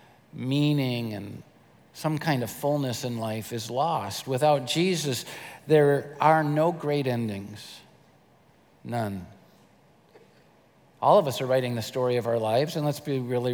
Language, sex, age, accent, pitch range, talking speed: English, male, 50-69, American, 125-175 Hz, 140 wpm